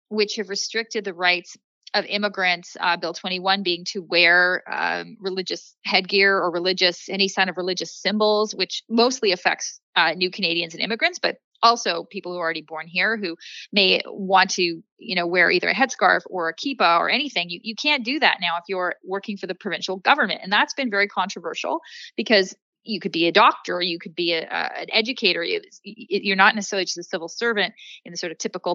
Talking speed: 200 wpm